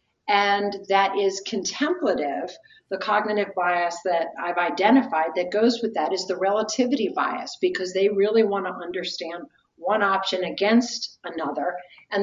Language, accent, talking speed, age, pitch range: English, American, 140 wpm, 50-69, 180-225 Hz